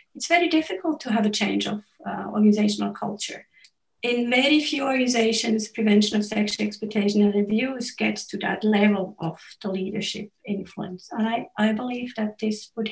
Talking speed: 165 wpm